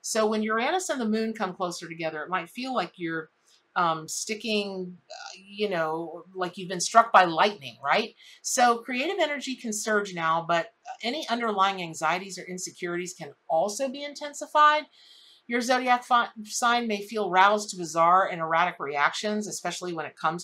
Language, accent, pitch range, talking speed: English, American, 175-235 Hz, 165 wpm